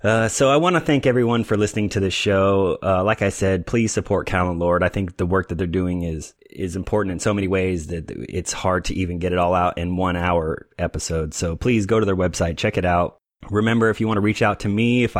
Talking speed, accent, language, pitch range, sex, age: 260 wpm, American, English, 90-105 Hz, male, 30-49